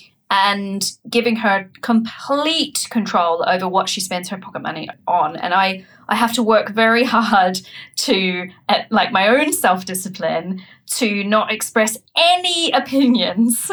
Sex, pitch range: female, 195-255 Hz